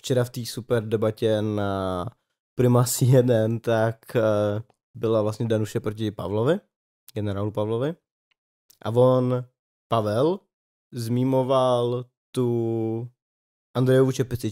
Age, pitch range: 20-39, 105-130 Hz